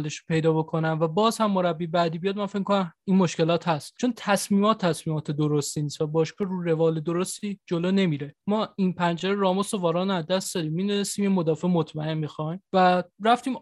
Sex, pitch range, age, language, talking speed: male, 160-195 Hz, 20-39, Persian, 185 wpm